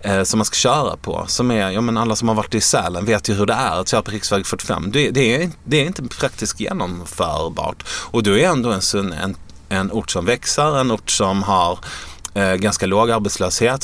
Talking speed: 215 wpm